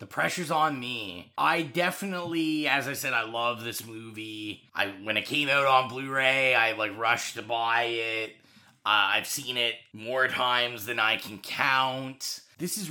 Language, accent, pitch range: English, American, 115-155 Hz